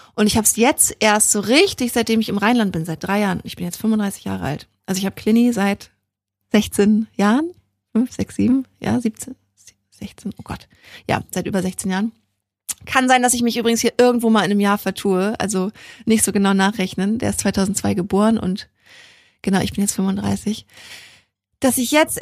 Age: 30-49